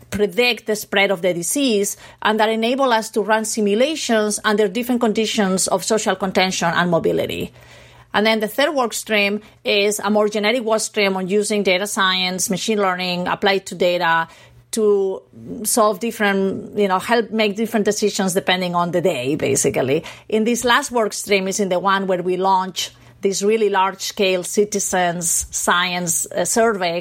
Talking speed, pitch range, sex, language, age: 165 wpm, 185-225 Hz, female, English, 40-59